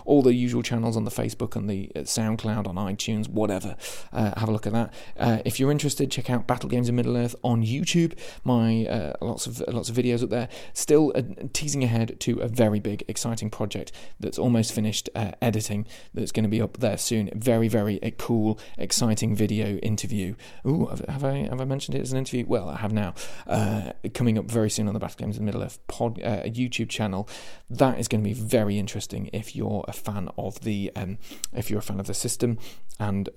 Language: English